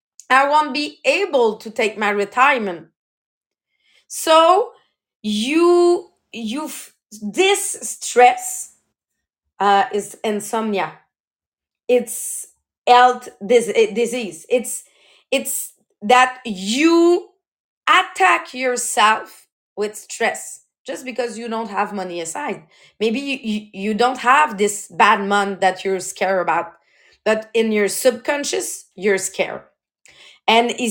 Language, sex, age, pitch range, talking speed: English, female, 30-49, 215-300 Hz, 105 wpm